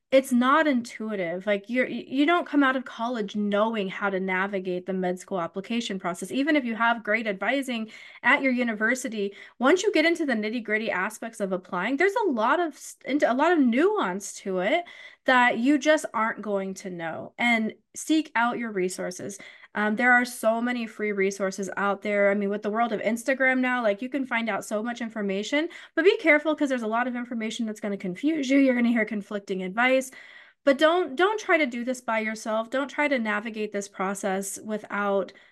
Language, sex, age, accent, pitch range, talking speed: English, female, 30-49, American, 200-265 Hz, 205 wpm